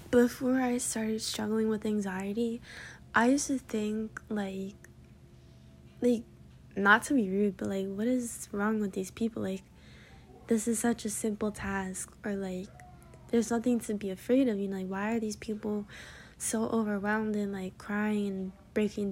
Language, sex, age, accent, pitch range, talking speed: English, female, 10-29, American, 200-235 Hz, 165 wpm